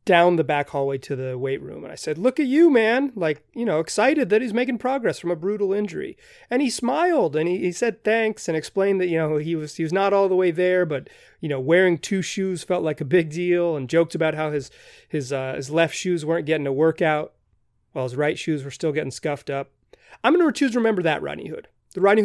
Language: English